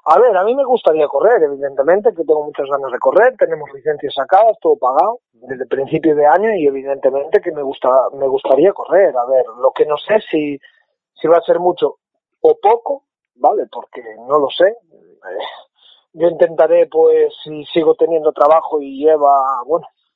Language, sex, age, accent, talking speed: Spanish, male, 30-49, Spanish, 180 wpm